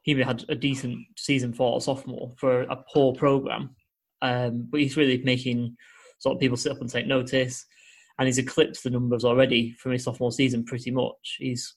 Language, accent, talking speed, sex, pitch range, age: English, British, 195 wpm, male, 120-135 Hz, 20-39